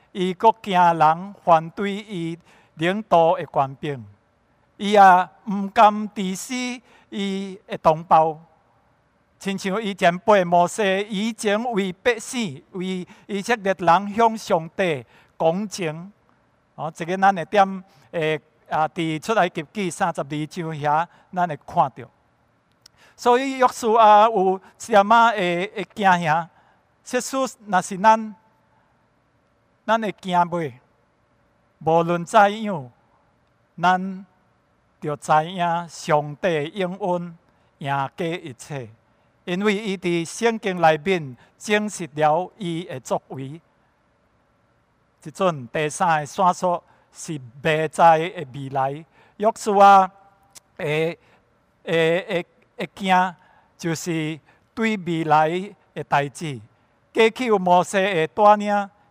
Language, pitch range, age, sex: English, 160-200 Hz, 60-79, male